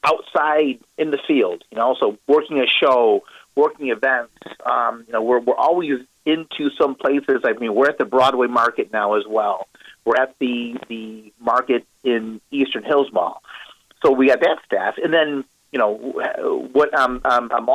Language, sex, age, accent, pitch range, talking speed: English, male, 40-59, American, 115-150 Hz, 180 wpm